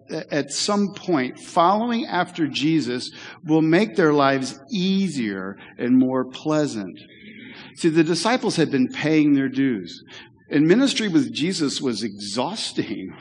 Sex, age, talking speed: male, 50-69, 125 wpm